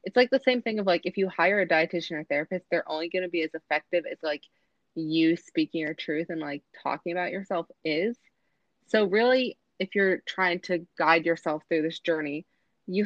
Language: English